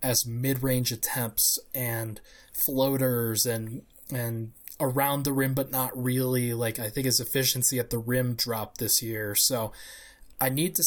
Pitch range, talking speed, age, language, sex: 115-135 Hz, 155 wpm, 20-39, English, male